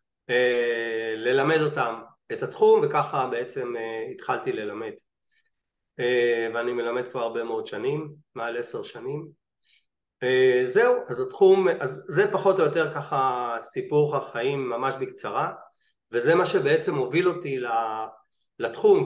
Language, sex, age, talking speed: Hebrew, male, 30-49, 115 wpm